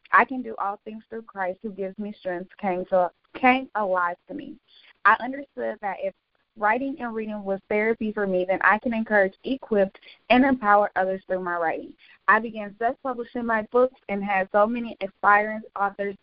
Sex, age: female, 20-39